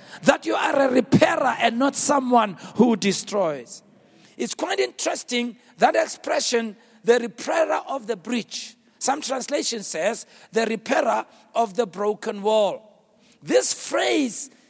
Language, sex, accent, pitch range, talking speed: English, male, South African, 230-295 Hz, 125 wpm